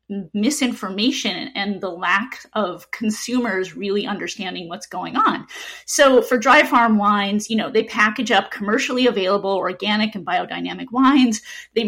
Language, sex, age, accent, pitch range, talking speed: English, female, 30-49, American, 210-265 Hz, 140 wpm